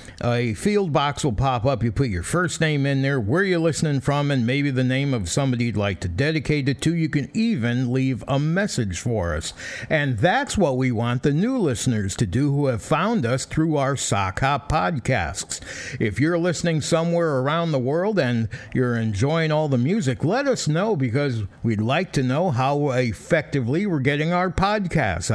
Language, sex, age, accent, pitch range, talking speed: English, male, 60-79, American, 115-160 Hz, 195 wpm